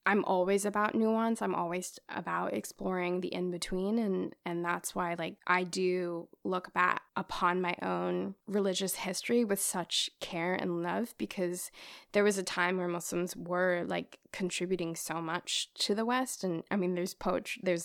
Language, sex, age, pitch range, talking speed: English, female, 10-29, 180-205 Hz, 170 wpm